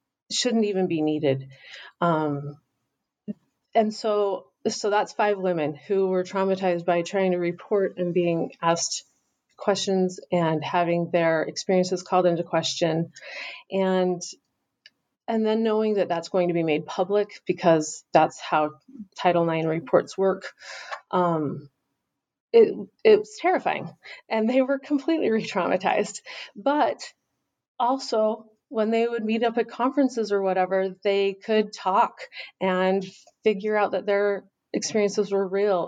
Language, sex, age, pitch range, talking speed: English, female, 30-49, 175-210 Hz, 130 wpm